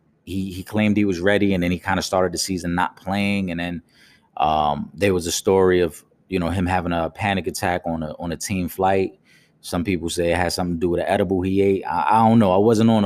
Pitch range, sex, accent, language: 90-110 Hz, male, American, English